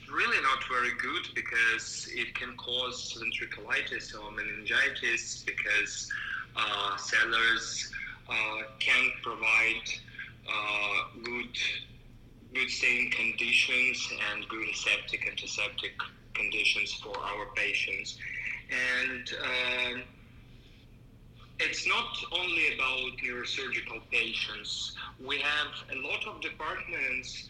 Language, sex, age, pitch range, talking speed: English, male, 20-39, 115-130 Hz, 95 wpm